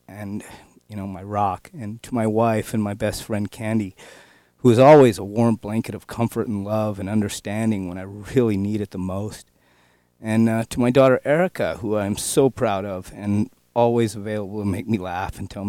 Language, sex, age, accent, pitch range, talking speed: English, male, 30-49, American, 100-130 Hz, 205 wpm